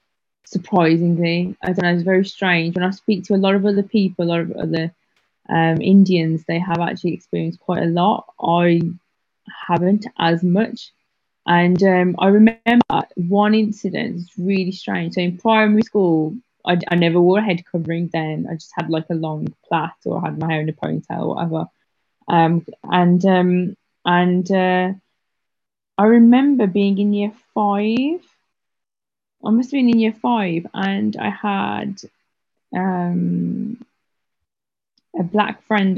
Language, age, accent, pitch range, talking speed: English, 20-39, British, 170-205 Hz, 155 wpm